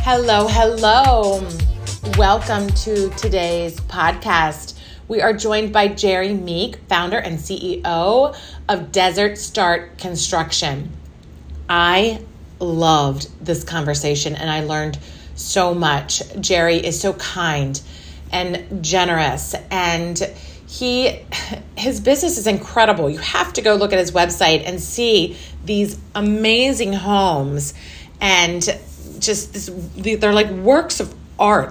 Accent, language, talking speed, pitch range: American, English, 115 wpm, 165-210 Hz